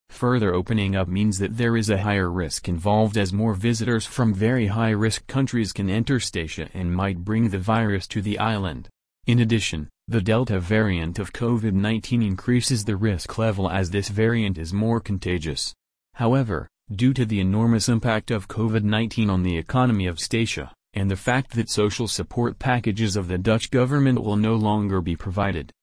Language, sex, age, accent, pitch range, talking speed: English, male, 30-49, American, 95-115 Hz, 175 wpm